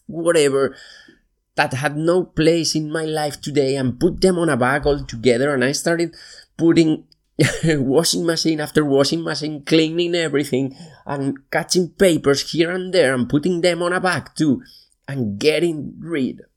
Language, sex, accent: English, male, Spanish